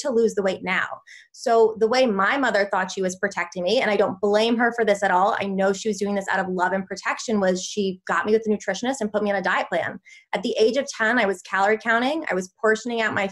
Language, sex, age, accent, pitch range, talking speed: English, female, 20-39, American, 195-230 Hz, 280 wpm